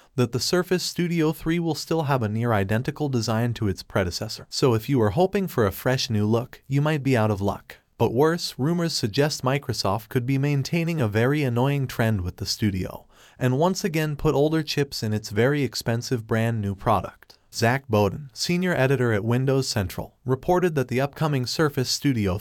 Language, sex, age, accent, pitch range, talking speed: Hindi, male, 30-49, American, 110-150 Hz, 195 wpm